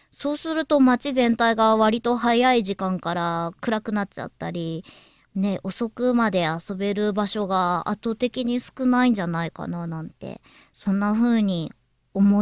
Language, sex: Japanese, male